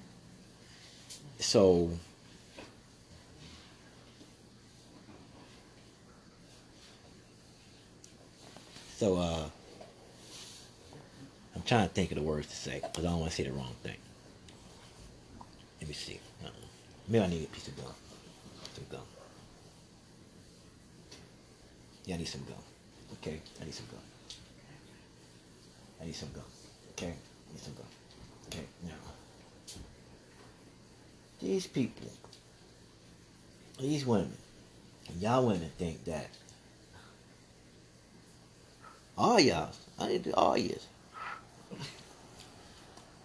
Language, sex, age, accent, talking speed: English, male, 50-69, American, 95 wpm